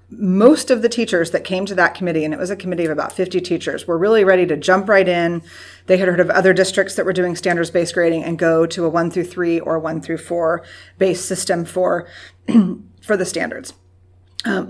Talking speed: 220 wpm